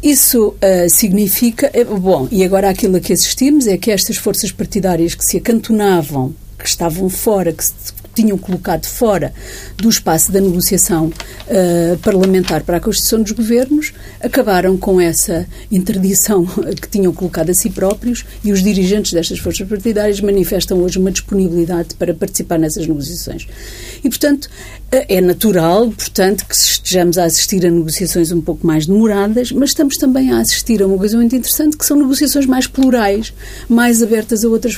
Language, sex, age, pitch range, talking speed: Portuguese, female, 50-69, 180-235 Hz, 165 wpm